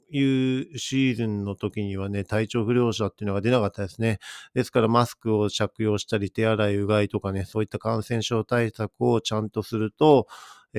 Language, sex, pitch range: Japanese, male, 105-120 Hz